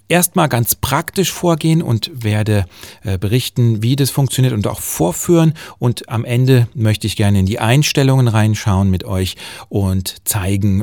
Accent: German